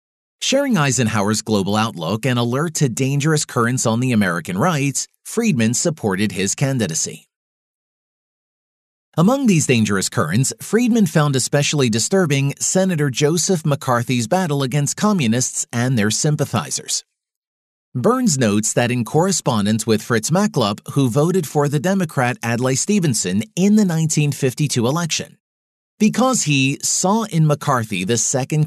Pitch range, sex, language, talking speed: 115-165 Hz, male, English, 125 wpm